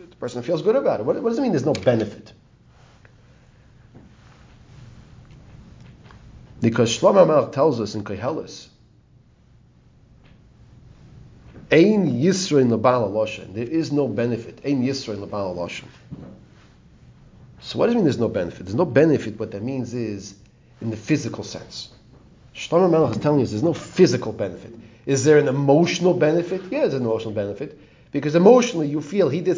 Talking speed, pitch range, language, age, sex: 135 wpm, 110-155 Hz, English, 40-59, male